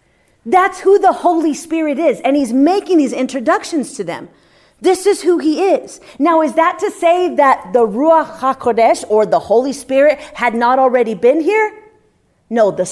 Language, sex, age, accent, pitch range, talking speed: English, female, 40-59, American, 220-320 Hz, 175 wpm